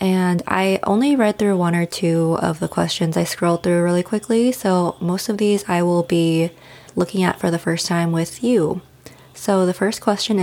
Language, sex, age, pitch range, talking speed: English, female, 20-39, 170-210 Hz, 200 wpm